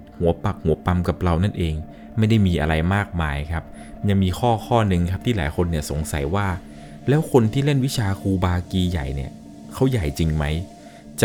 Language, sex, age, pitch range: Thai, male, 20-39, 85-110 Hz